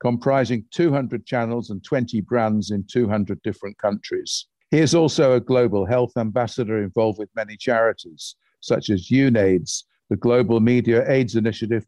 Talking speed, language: 145 wpm, English